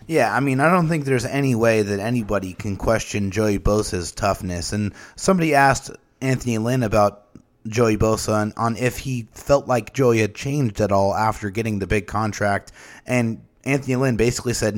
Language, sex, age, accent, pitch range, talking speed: English, male, 30-49, American, 105-120 Hz, 185 wpm